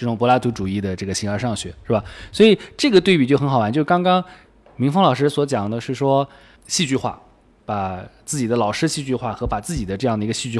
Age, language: 20-39, Chinese